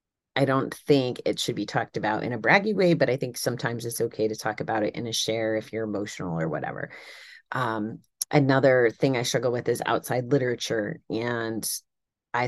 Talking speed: 195 wpm